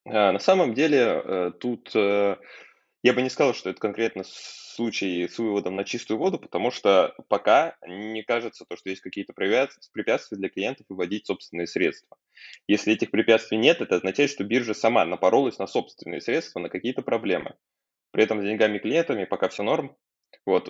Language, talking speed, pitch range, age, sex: Russian, 160 wpm, 95-125 Hz, 20-39, male